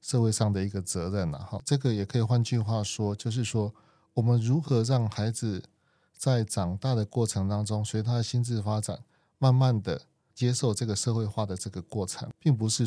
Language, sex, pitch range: Chinese, male, 105-125 Hz